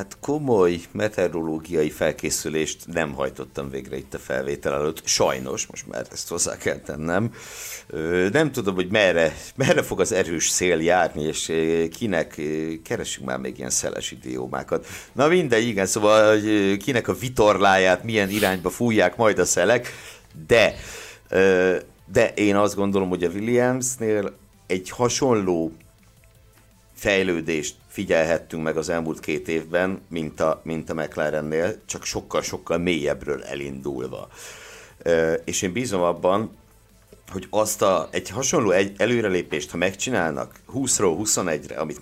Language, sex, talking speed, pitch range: Hungarian, male, 130 wpm, 80-110 Hz